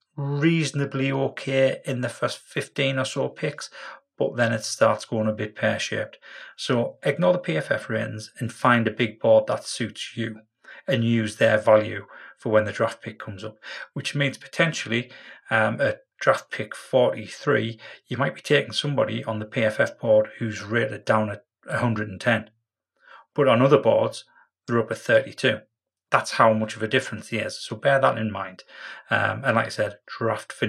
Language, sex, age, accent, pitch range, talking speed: English, male, 30-49, British, 110-135 Hz, 180 wpm